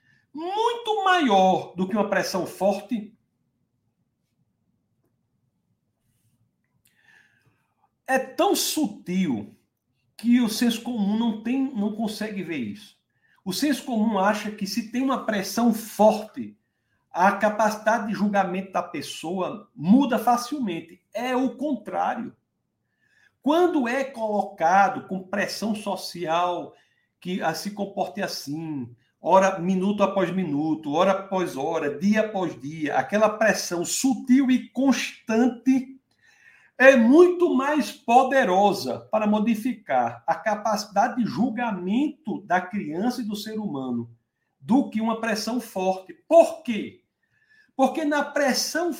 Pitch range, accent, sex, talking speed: 195-260 Hz, Brazilian, male, 110 wpm